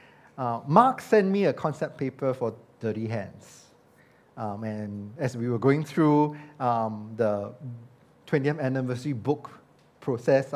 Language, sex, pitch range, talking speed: English, male, 125-170 Hz, 130 wpm